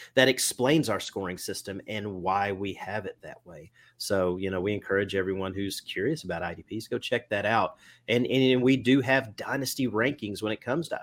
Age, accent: 30-49, American